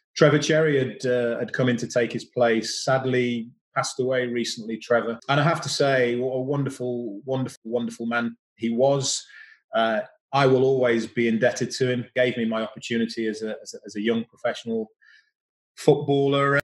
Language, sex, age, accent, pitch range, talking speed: English, male, 30-49, British, 120-150 Hz, 180 wpm